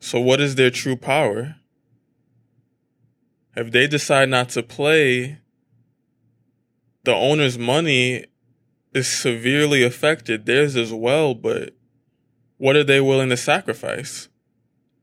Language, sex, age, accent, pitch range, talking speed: English, male, 20-39, American, 120-130 Hz, 110 wpm